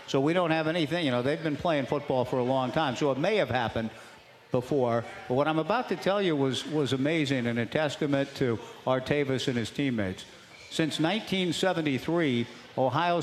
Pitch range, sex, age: 135-180 Hz, male, 50-69